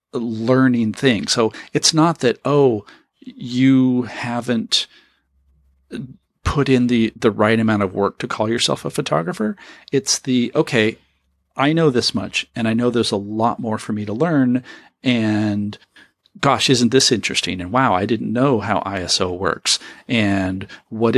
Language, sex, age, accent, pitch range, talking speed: English, male, 40-59, American, 105-135 Hz, 155 wpm